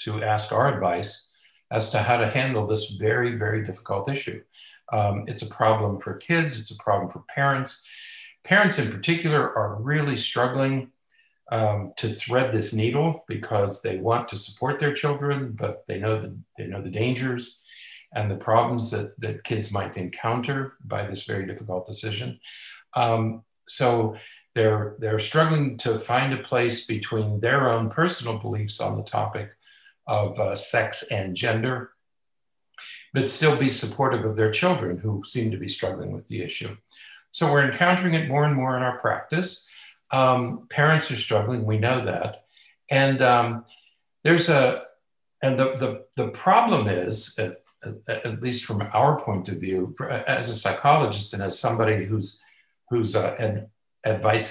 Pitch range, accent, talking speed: 105-135 Hz, American, 160 wpm